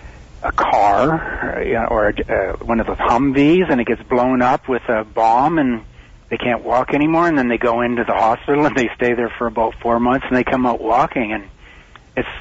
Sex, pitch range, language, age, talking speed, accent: male, 110-150 Hz, English, 60-79, 210 wpm, American